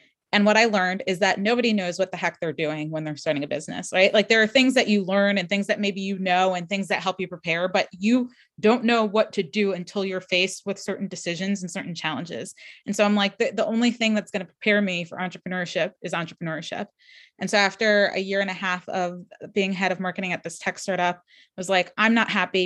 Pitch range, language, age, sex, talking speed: 180-205 Hz, English, 20-39, female, 250 wpm